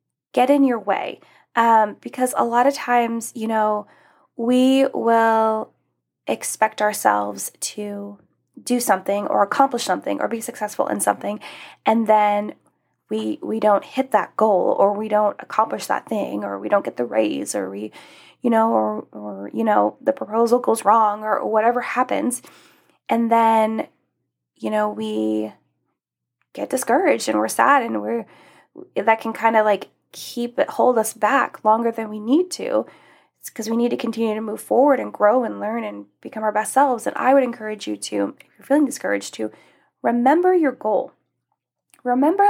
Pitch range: 200-250 Hz